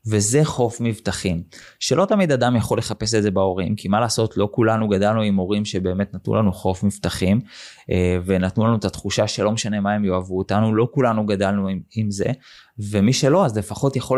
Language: Hebrew